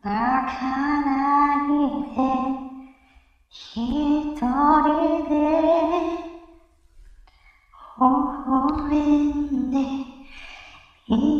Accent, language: American, Japanese